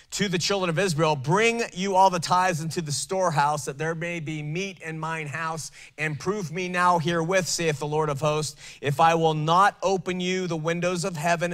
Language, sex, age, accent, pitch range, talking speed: English, male, 30-49, American, 140-175 Hz, 215 wpm